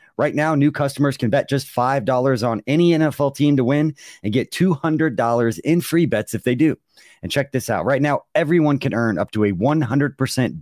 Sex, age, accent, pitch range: male, 40-59, American, 115-145 Hz